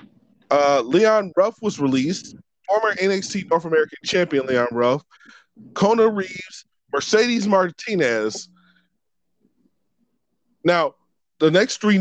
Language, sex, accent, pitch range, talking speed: English, male, American, 150-195 Hz, 100 wpm